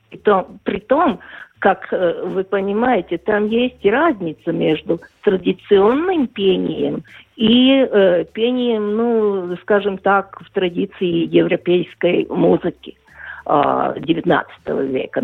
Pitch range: 190-255 Hz